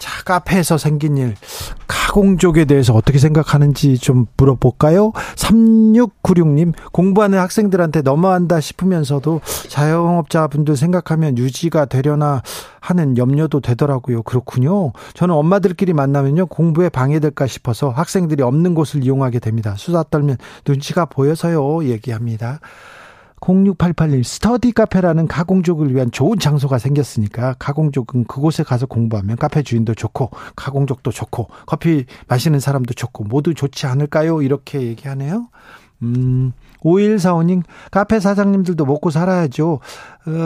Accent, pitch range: native, 135-175 Hz